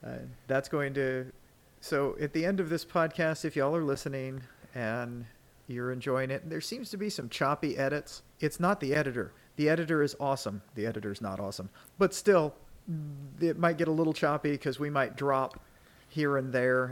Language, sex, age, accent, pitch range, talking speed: English, male, 40-59, American, 125-155 Hz, 190 wpm